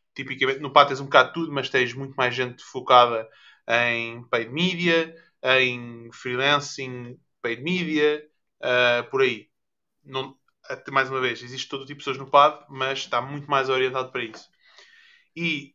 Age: 20-39